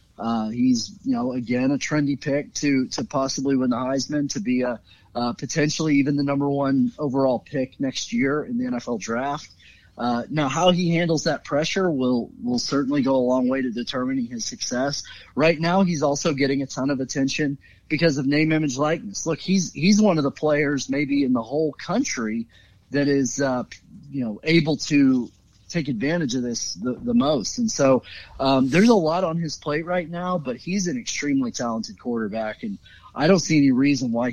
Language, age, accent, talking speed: English, 30-49, American, 200 wpm